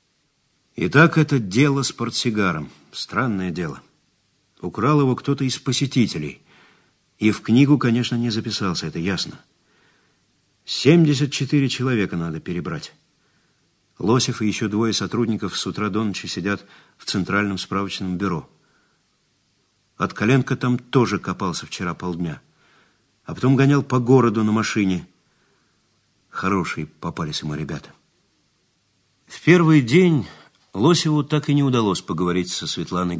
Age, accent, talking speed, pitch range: 50-69, native, 120 wpm, 95-130 Hz